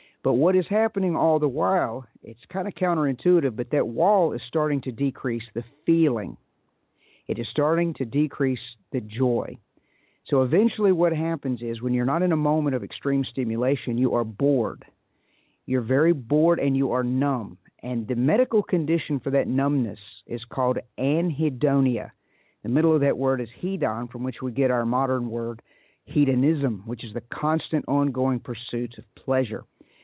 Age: 50-69